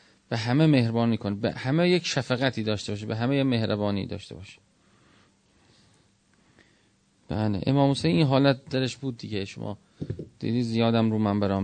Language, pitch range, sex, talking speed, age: Persian, 105-125 Hz, male, 150 wpm, 30-49